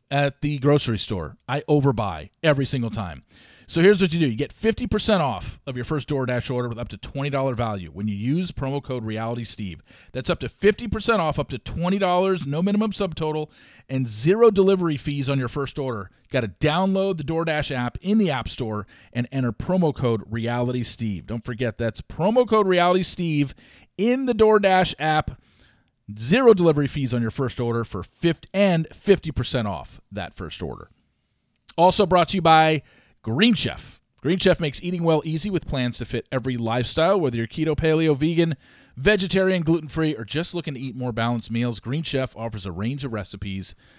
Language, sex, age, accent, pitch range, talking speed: English, male, 40-59, American, 120-170 Hz, 185 wpm